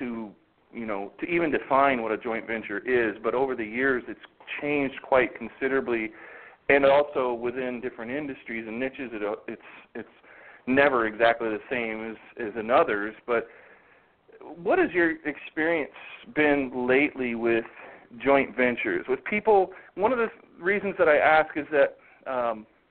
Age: 40-59